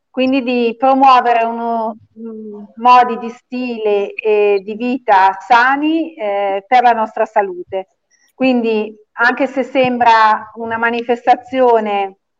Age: 40-59